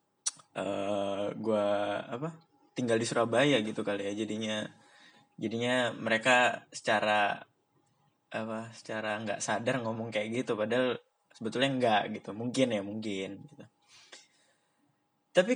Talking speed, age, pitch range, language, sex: 110 wpm, 10-29, 110-160 Hz, English, male